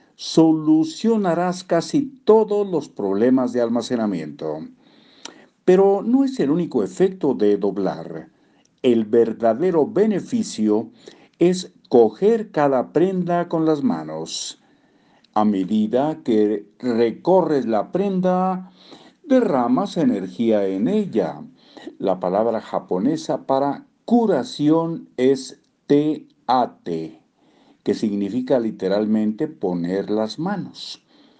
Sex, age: male, 50-69